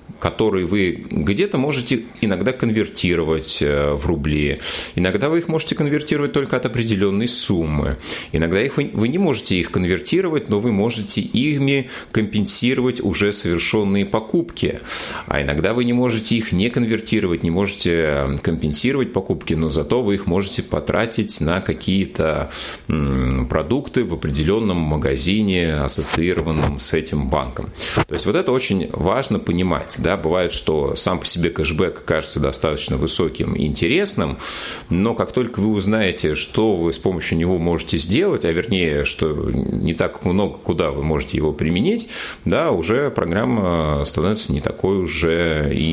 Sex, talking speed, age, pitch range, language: male, 140 wpm, 30-49, 80-110 Hz, Russian